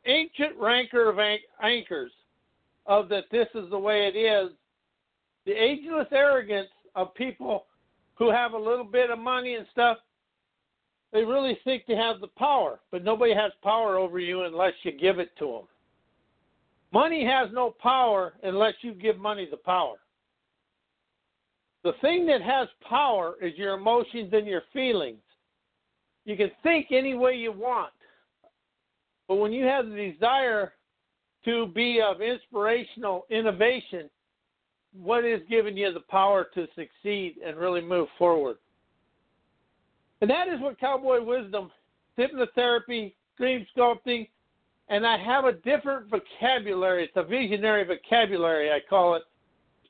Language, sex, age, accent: English, male, 60-79, American